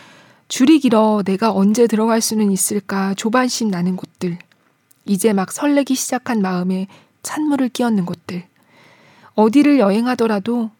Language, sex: Korean, female